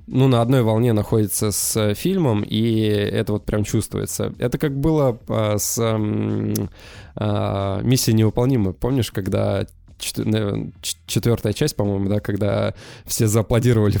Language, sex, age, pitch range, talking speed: Russian, male, 20-39, 105-125 Hz, 115 wpm